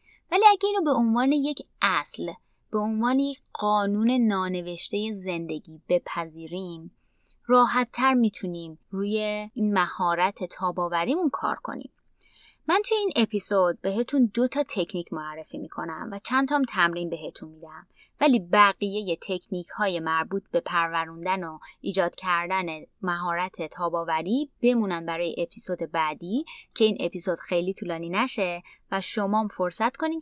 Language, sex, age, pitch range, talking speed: Persian, female, 20-39, 175-240 Hz, 125 wpm